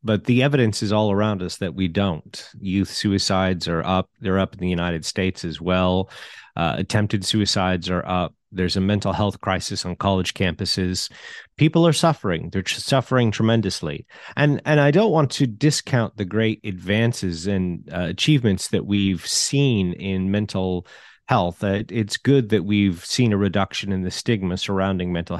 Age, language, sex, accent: 30-49, English, male, American